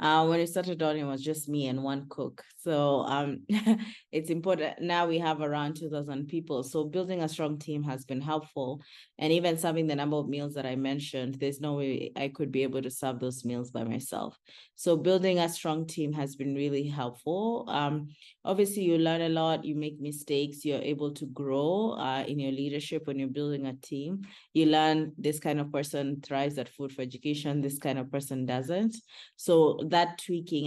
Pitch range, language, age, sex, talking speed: 135-160 Hz, English, 20-39, female, 200 wpm